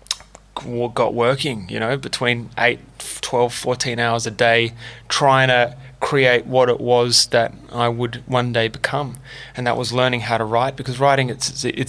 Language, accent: English, Australian